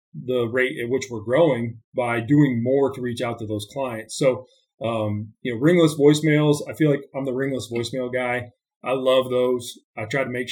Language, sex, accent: English, male, American